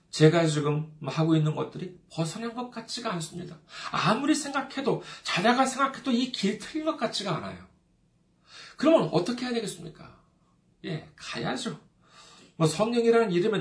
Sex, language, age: male, Korean, 40-59